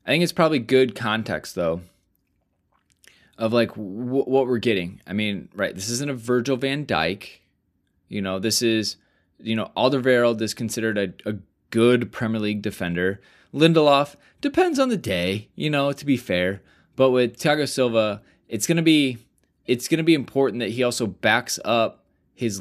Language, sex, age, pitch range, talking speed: English, male, 20-39, 95-125 Hz, 170 wpm